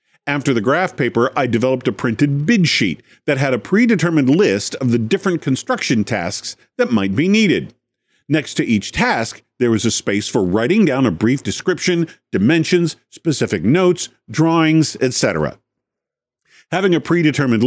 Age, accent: 50-69, American